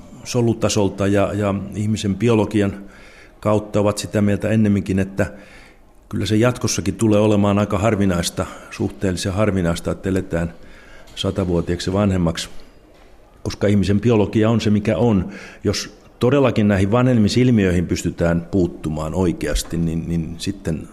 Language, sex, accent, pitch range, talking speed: Finnish, male, native, 90-105 Hz, 120 wpm